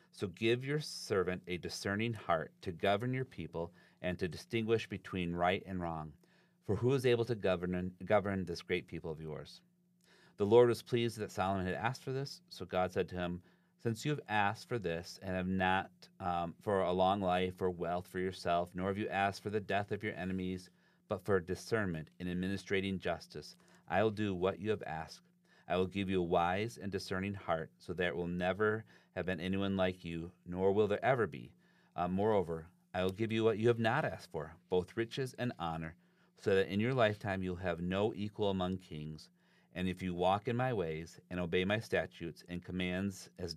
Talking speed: 210 wpm